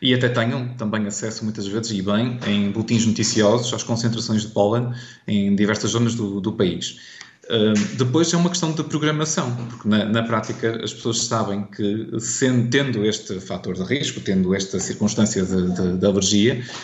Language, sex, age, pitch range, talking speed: Portuguese, male, 20-39, 105-120 Hz, 170 wpm